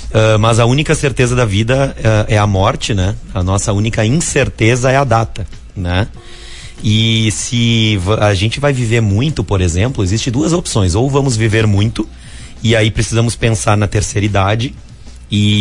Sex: male